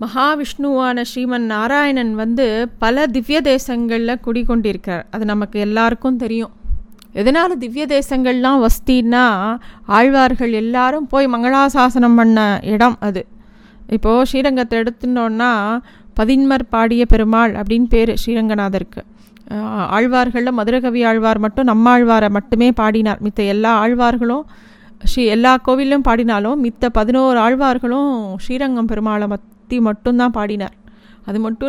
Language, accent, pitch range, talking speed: Tamil, native, 220-255 Hz, 105 wpm